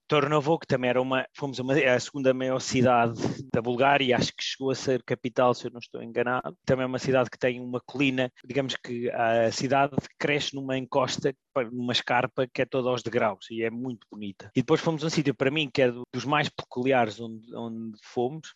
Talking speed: 220 wpm